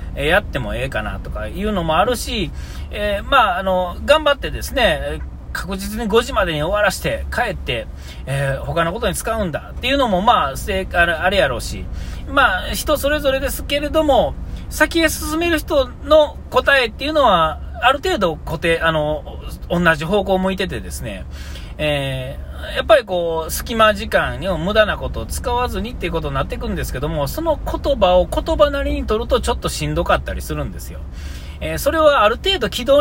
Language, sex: Japanese, male